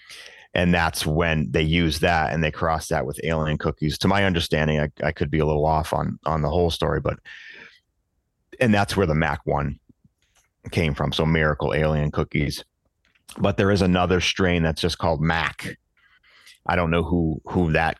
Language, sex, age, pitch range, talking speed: English, male, 30-49, 75-90 Hz, 185 wpm